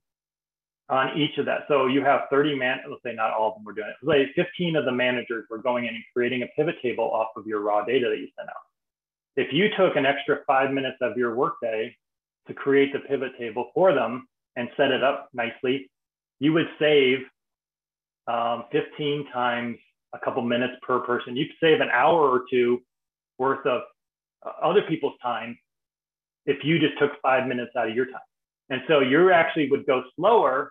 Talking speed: 200 wpm